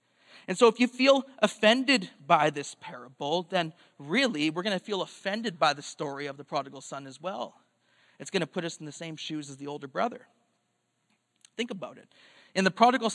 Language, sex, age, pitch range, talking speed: English, male, 30-49, 150-220 Hz, 200 wpm